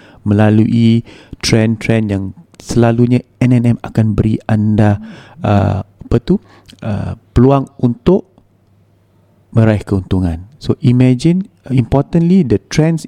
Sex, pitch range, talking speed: male, 100-130 Hz, 95 wpm